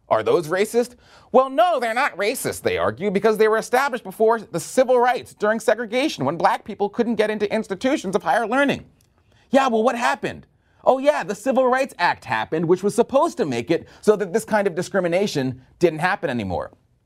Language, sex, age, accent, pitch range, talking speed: English, male, 30-49, American, 130-220 Hz, 195 wpm